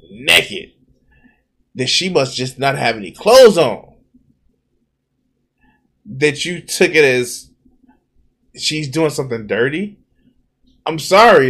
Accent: American